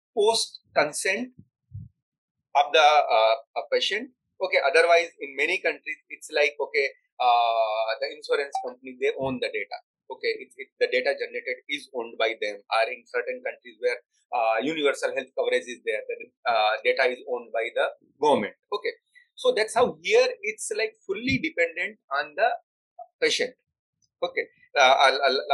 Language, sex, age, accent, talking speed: Hindi, male, 30-49, native, 155 wpm